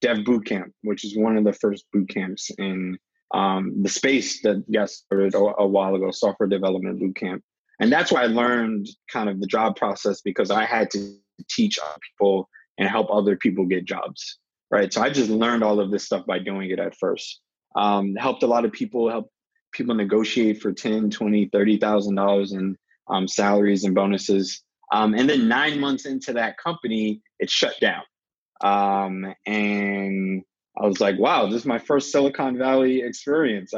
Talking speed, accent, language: 175 wpm, American, English